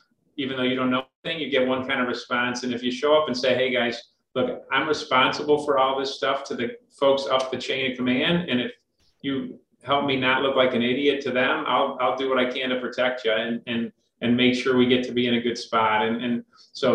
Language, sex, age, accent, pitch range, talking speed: English, male, 40-59, American, 120-130 Hz, 260 wpm